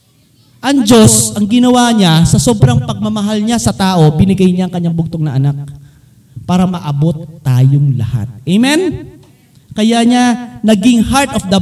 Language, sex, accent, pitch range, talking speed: Filipino, male, native, 130-215 Hz, 150 wpm